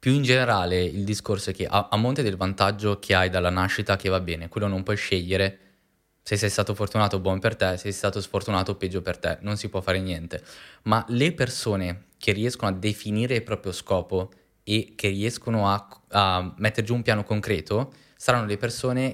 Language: Italian